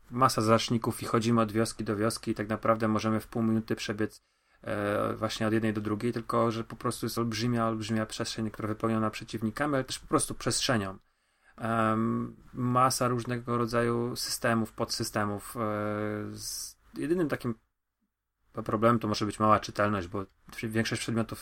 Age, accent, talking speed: 30-49, native, 160 wpm